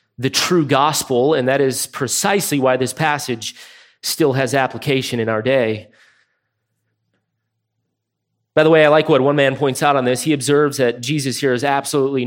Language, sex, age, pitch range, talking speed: English, male, 30-49, 125-155 Hz, 170 wpm